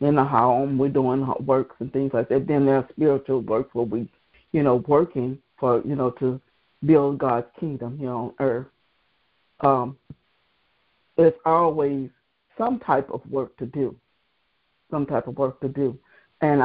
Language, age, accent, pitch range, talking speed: English, 60-79, American, 130-155 Hz, 165 wpm